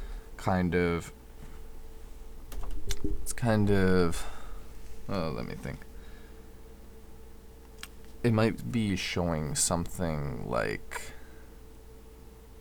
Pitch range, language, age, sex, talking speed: 65-90 Hz, English, 20-39, male, 70 wpm